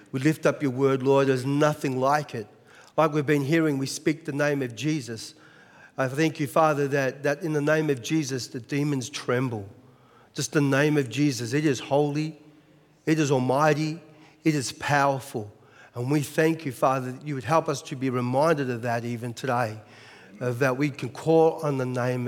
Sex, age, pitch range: male, 40-59, 135-165 Hz